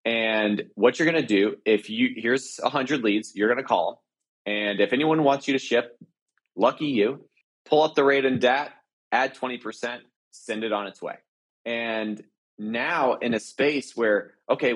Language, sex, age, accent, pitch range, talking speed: English, male, 30-49, American, 105-155 Hz, 185 wpm